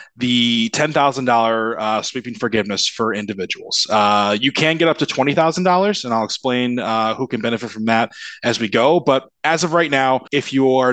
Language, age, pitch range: English, 20-39, 115-140 Hz